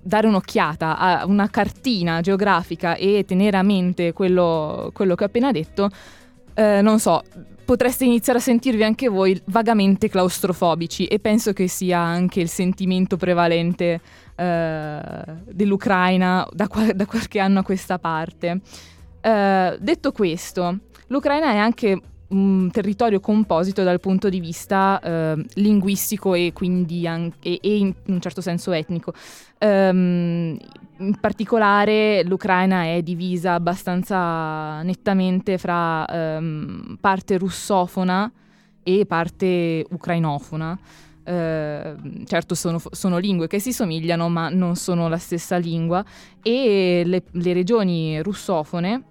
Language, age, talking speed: Italian, 20-39, 125 wpm